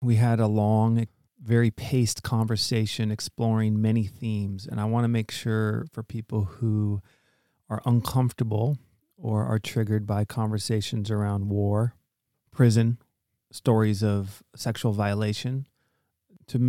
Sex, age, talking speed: male, 30-49, 120 wpm